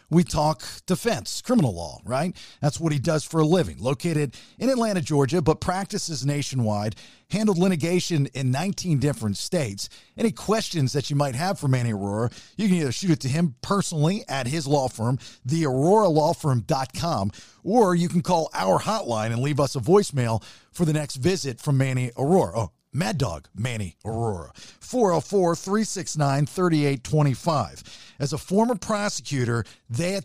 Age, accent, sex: 50-69, American, male